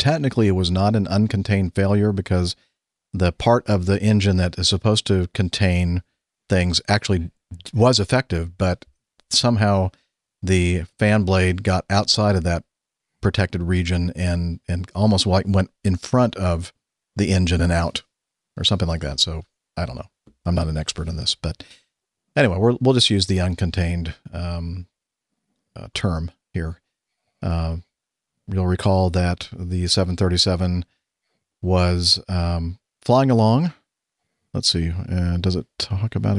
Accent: American